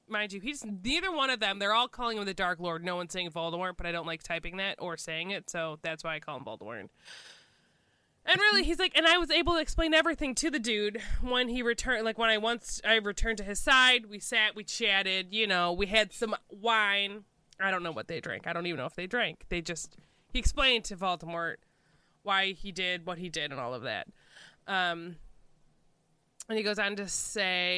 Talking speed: 230 wpm